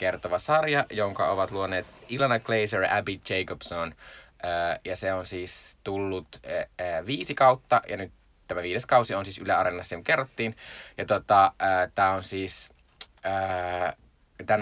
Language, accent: Finnish, native